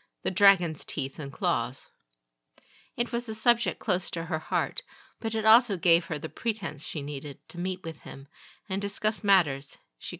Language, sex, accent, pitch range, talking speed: English, female, American, 150-200 Hz, 175 wpm